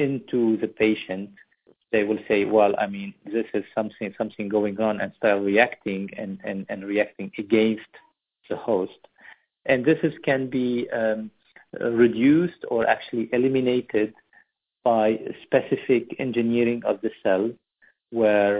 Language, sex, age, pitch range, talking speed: English, male, 50-69, 105-125 Hz, 135 wpm